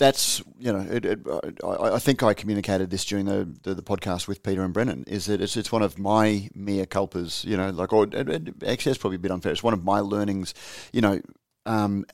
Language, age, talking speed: English, 30-49, 230 wpm